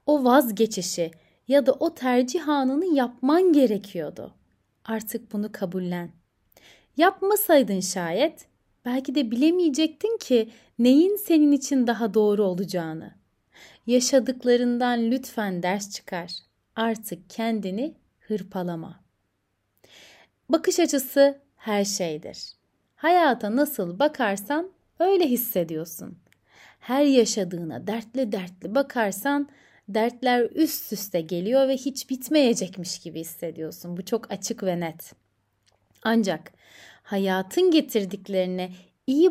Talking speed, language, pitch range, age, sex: 95 wpm, Turkish, 185-270 Hz, 30-49, female